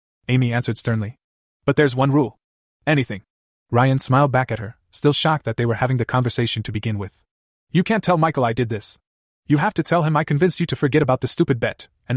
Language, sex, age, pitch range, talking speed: English, male, 20-39, 110-140 Hz, 225 wpm